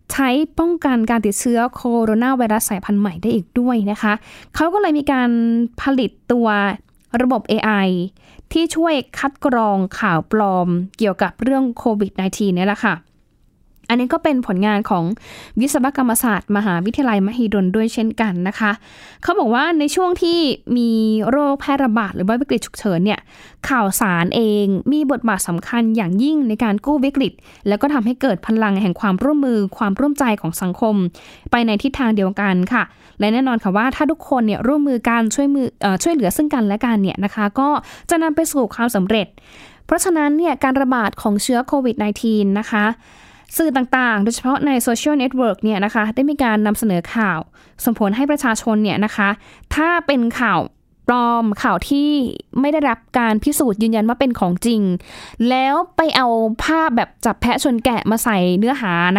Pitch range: 205-275 Hz